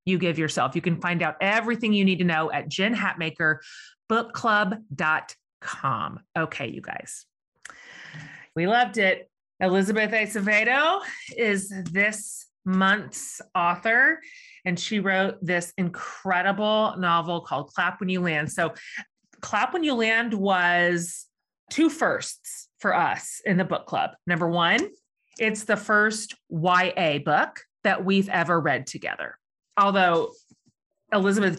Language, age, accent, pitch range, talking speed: English, 30-49, American, 175-210 Hz, 125 wpm